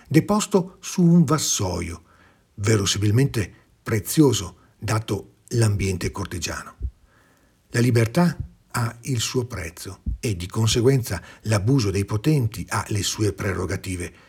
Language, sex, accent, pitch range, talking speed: Italian, male, native, 95-115 Hz, 105 wpm